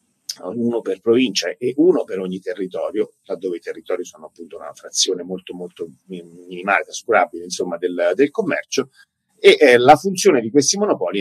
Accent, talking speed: Italian, 160 wpm